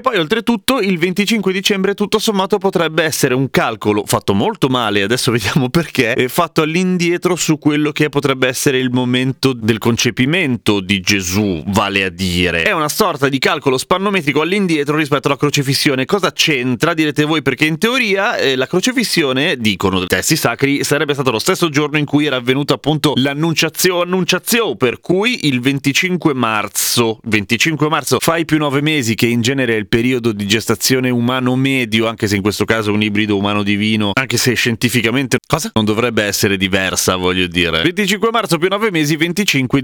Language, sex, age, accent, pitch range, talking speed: Italian, male, 30-49, native, 110-155 Hz, 175 wpm